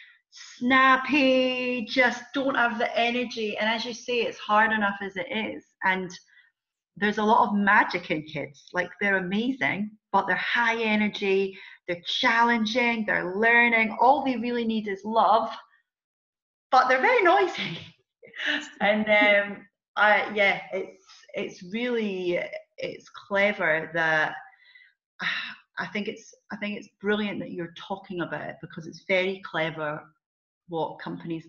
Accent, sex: British, female